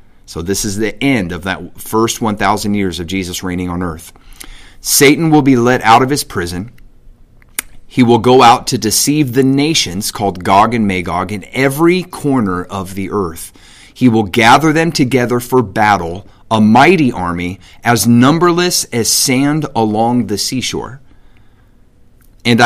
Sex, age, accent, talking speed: male, 30-49, American, 155 wpm